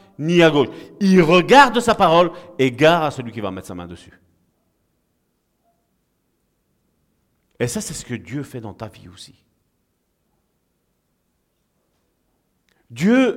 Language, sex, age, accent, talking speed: French, male, 50-69, French, 130 wpm